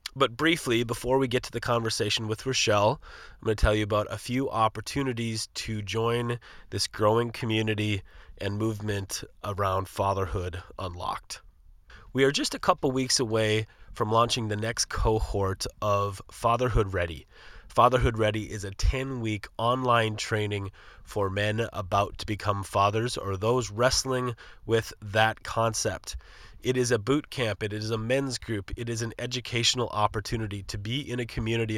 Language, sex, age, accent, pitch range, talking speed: English, male, 30-49, American, 100-120 Hz, 155 wpm